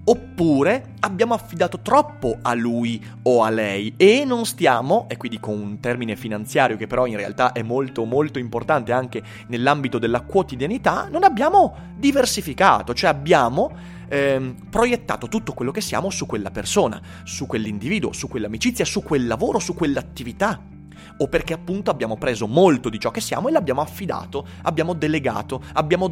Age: 30-49